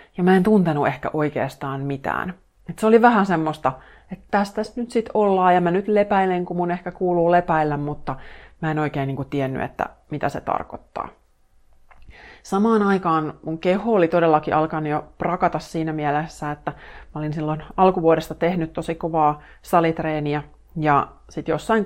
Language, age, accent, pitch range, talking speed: Finnish, 30-49, native, 150-180 Hz, 160 wpm